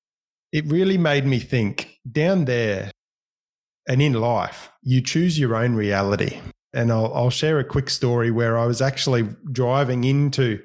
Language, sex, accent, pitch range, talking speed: English, male, Australian, 120-175 Hz, 160 wpm